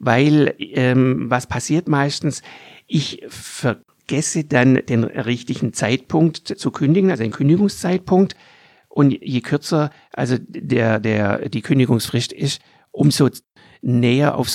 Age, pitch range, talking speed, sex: 50-69, 130-175 Hz, 115 wpm, male